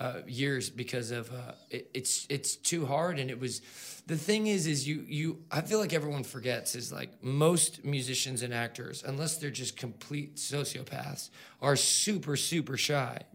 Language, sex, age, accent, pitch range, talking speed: English, male, 20-39, American, 125-155 Hz, 175 wpm